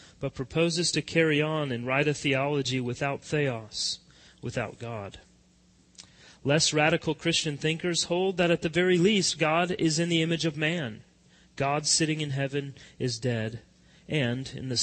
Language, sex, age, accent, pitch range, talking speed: English, male, 30-49, American, 125-165 Hz, 160 wpm